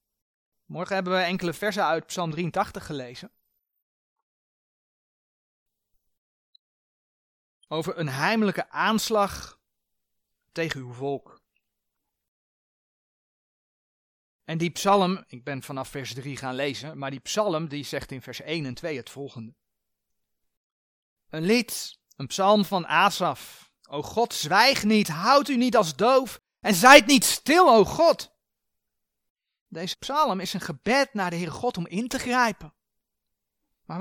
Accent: Dutch